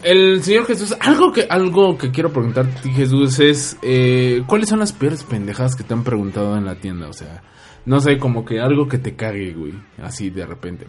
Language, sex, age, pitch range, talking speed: Spanish, male, 20-39, 100-140 Hz, 210 wpm